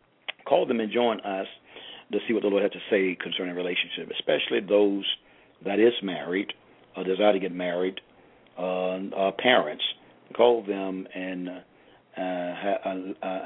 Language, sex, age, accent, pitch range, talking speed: English, male, 50-69, American, 90-100 Hz, 145 wpm